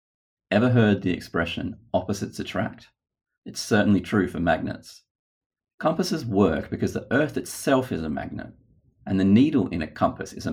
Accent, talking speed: Australian, 160 wpm